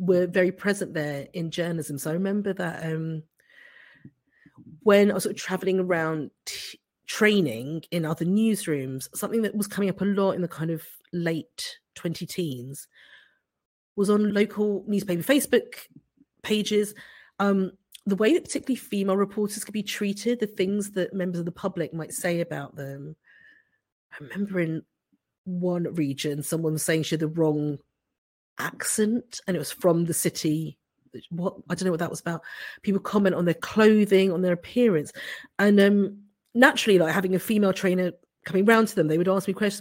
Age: 40-59